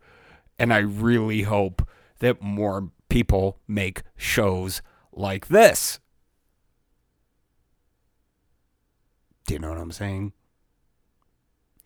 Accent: American